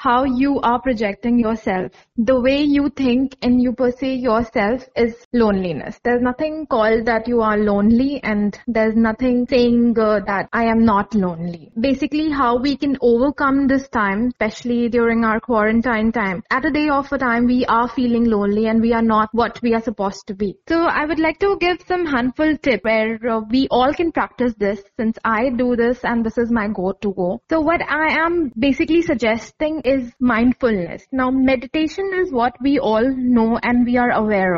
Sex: female